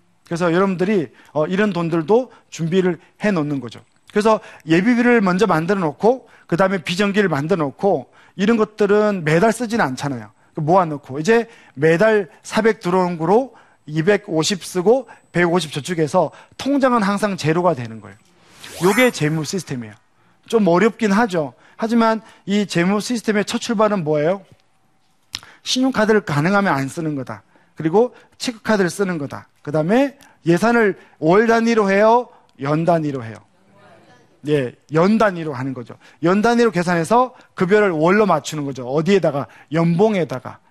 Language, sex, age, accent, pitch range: Korean, male, 40-59, native, 150-215 Hz